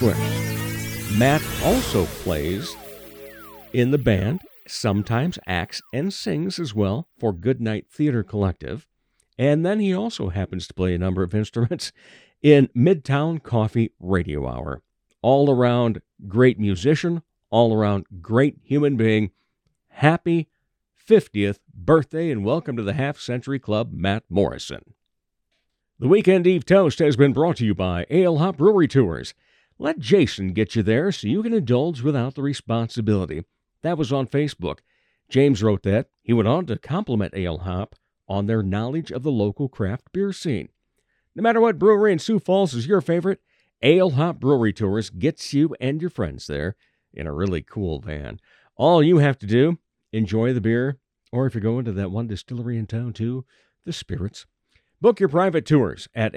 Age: 50-69